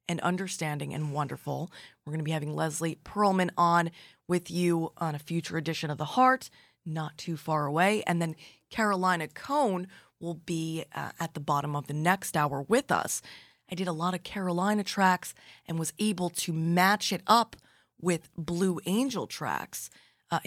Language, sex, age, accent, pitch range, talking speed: English, female, 20-39, American, 155-195 Hz, 175 wpm